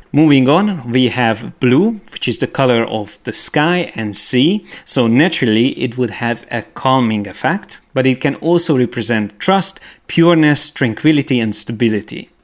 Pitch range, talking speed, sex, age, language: 115-155 Hz, 155 wpm, male, 30-49, English